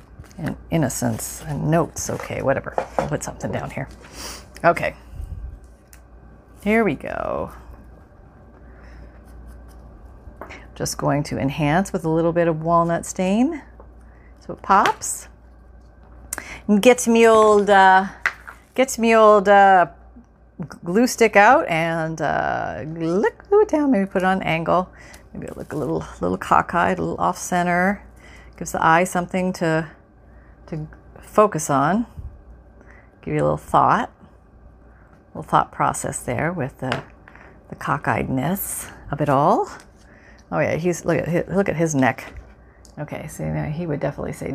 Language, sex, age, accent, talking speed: English, female, 40-59, American, 140 wpm